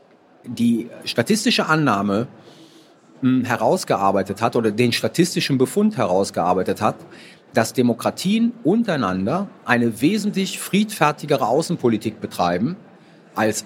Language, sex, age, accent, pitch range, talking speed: German, male, 40-59, German, 130-185 Hz, 90 wpm